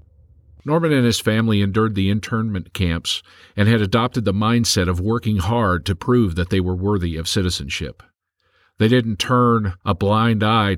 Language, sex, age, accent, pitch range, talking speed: English, male, 50-69, American, 90-115 Hz, 165 wpm